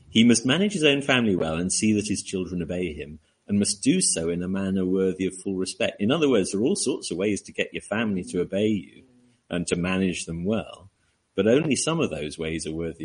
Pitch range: 90-125 Hz